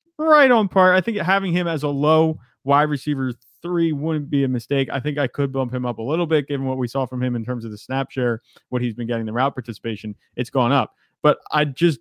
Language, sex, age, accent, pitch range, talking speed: English, male, 30-49, American, 120-150 Hz, 260 wpm